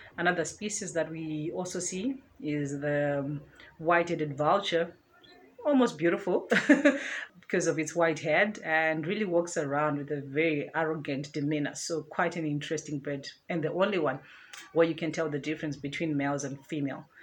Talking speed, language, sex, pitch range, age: 160 wpm, English, female, 150-170 Hz, 30-49